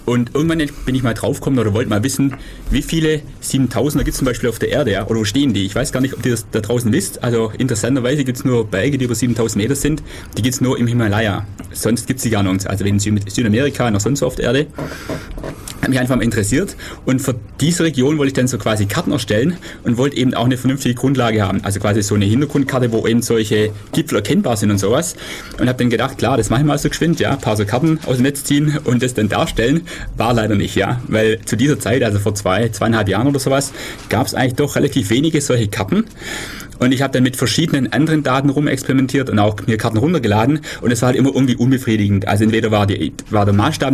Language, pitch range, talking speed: German, 110-135 Hz, 245 wpm